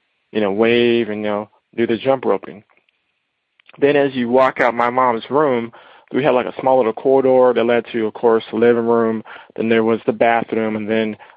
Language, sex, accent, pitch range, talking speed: English, male, American, 110-125 Hz, 210 wpm